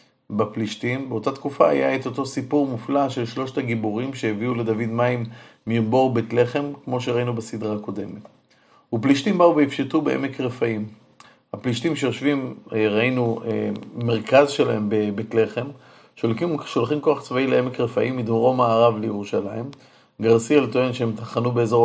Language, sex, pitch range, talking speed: Hebrew, male, 115-140 Hz, 125 wpm